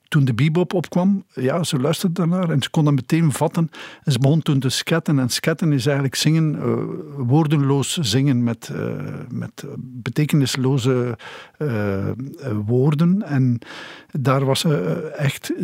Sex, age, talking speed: male, 50-69, 145 wpm